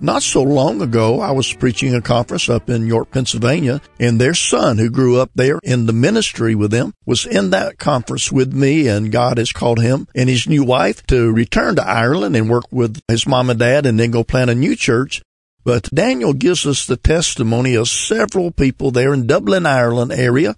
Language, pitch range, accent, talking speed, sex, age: English, 120-140 Hz, American, 210 wpm, male, 50-69